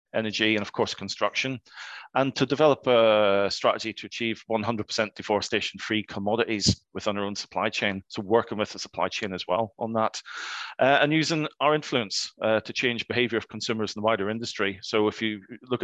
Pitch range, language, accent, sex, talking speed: 100-120 Hz, English, British, male, 190 wpm